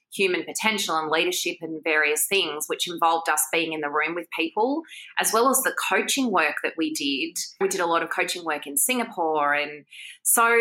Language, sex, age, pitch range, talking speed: English, female, 20-39, 165-240 Hz, 205 wpm